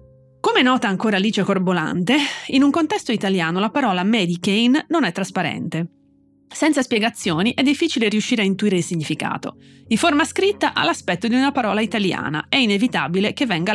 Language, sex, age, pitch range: Italian, female, 30-49, 185-260 Hz